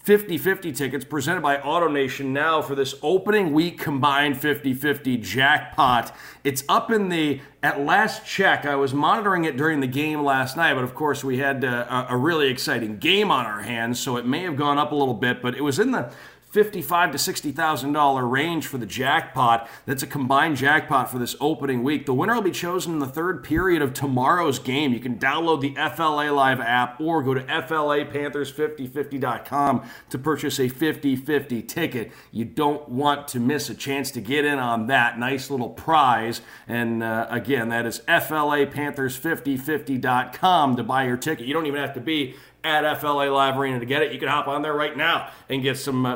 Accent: American